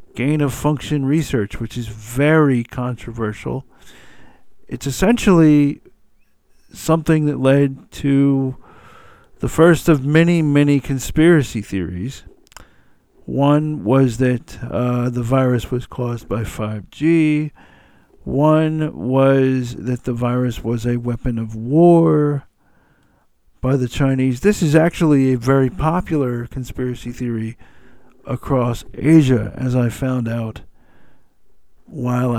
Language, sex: English, male